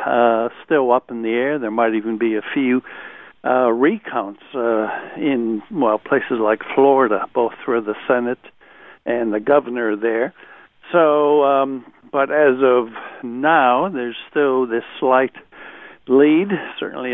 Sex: male